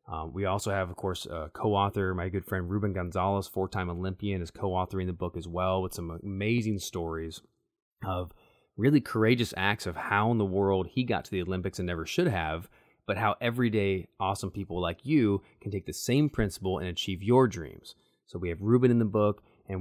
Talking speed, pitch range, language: 205 wpm, 90-110 Hz, English